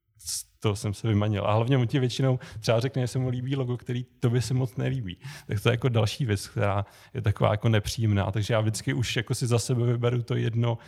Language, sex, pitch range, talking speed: Czech, male, 110-125 Hz, 235 wpm